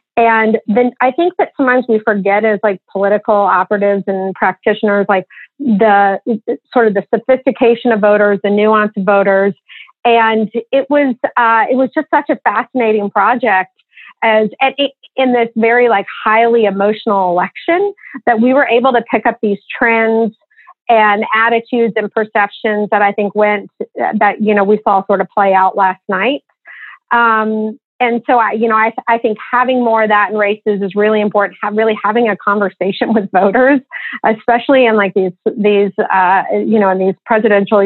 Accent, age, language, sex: American, 40-59, English, female